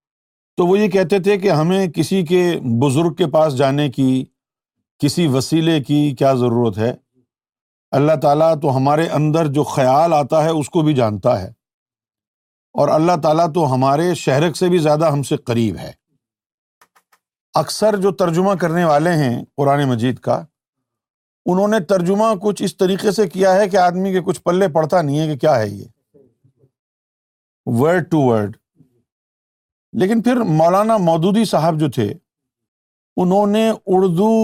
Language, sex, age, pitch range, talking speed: Urdu, male, 50-69, 130-180 Hz, 155 wpm